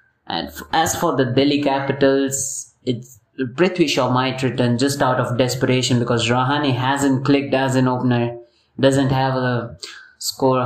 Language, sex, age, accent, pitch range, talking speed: English, male, 20-39, Indian, 125-140 Hz, 145 wpm